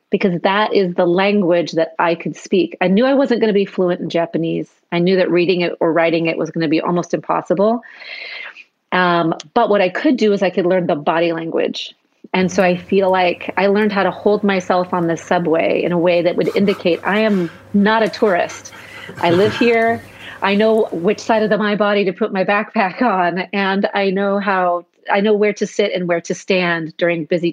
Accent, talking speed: American, 220 wpm